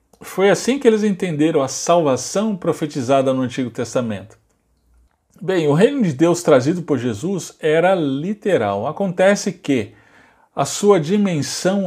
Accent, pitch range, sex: Brazilian, 140-200 Hz, male